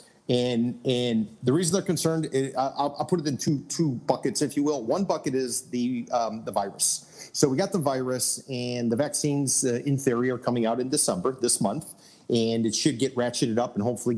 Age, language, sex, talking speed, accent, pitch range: 40-59, English, male, 205 wpm, American, 115-140 Hz